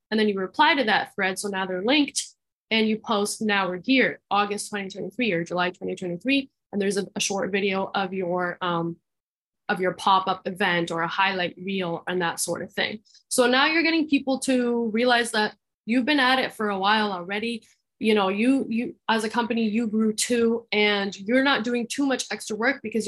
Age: 10-29